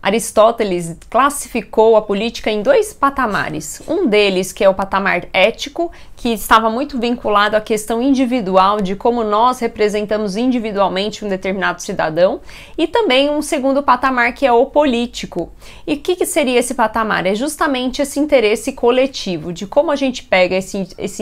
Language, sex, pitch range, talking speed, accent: Portuguese, female, 200-245 Hz, 155 wpm, Brazilian